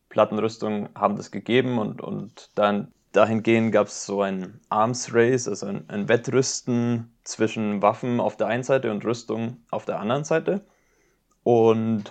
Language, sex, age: German, male, 20-39